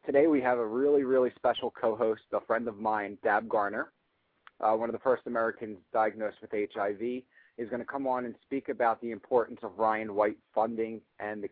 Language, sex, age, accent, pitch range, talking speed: English, male, 30-49, American, 110-130 Hz, 205 wpm